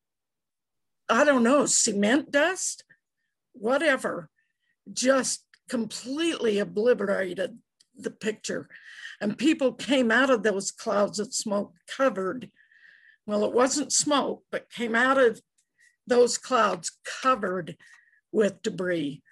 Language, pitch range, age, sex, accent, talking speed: English, 210-265 Hz, 50-69, female, American, 105 wpm